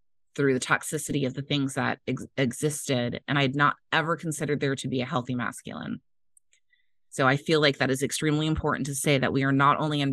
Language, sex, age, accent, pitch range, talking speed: English, female, 30-49, American, 130-150 Hz, 215 wpm